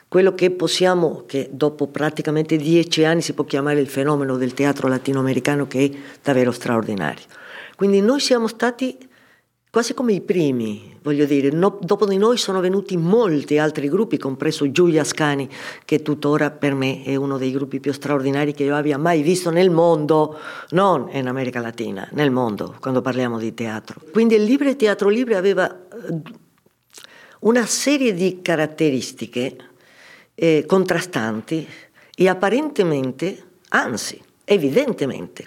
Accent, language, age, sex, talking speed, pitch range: American, Italian, 50-69, female, 140 wpm, 135-195 Hz